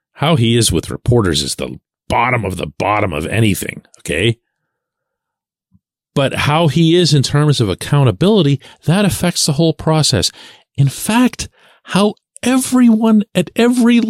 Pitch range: 125-170 Hz